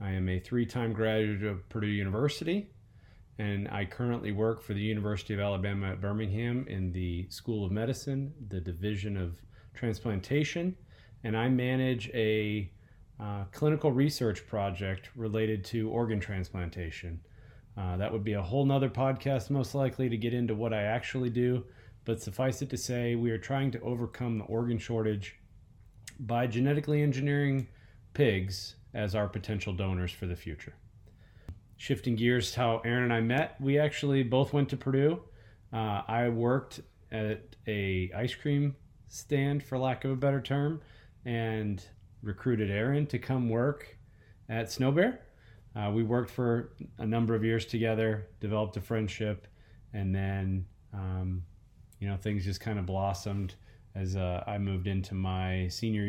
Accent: American